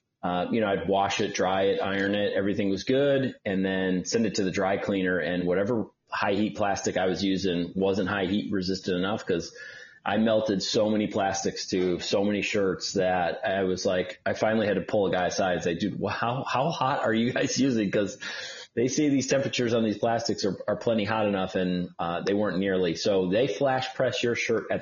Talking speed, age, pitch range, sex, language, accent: 220 wpm, 30-49, 95-110 Hz, male, English, American